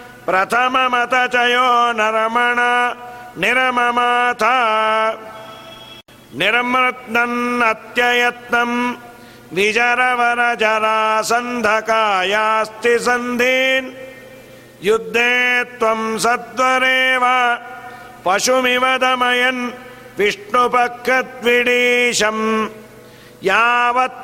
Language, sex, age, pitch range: Kannada, male, 50-69, 220-250 Hz